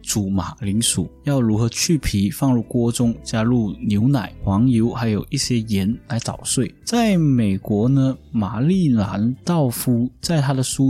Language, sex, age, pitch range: Chinese, male, 20-39, 105-145 Hz